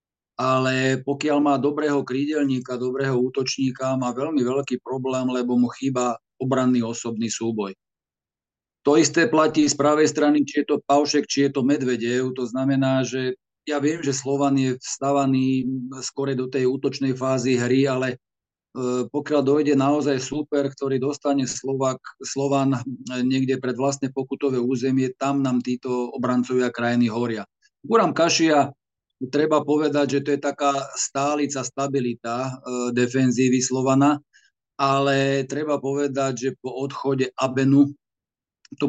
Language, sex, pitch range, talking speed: Slovak, male, 125-140 Hz, 135 wpm